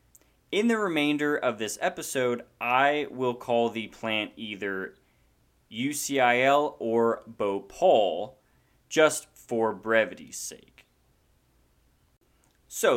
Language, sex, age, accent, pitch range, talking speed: English, male, 20-39, American, 105-150 Hz, 95 wpm